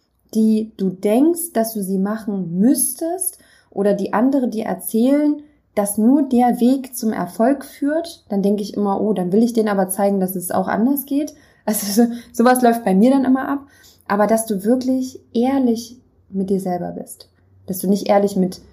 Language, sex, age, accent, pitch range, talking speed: German, female, 20-39, German, 185-230 Hz, 190 wpm